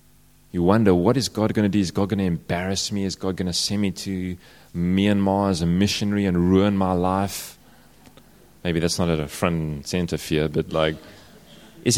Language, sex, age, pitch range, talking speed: English, male, 30-49, 90-120 Hz, 205 wpm